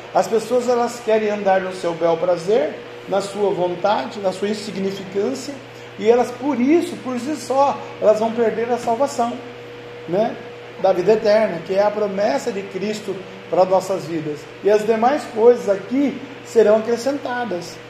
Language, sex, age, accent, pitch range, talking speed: Portuguese, male, 40-59, Brazilian, 200-245 Hz, 160 wpm